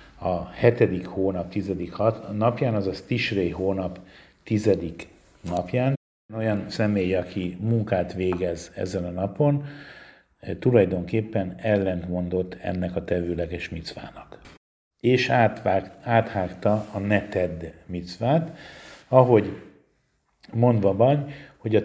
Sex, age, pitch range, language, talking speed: male, 50-69, 95-120 Hz, Hungarian, 95 wpm